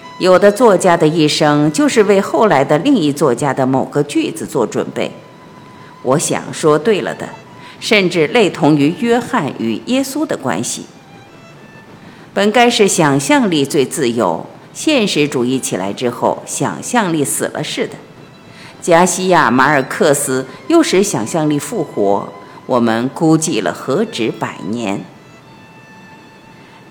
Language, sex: Chinese, female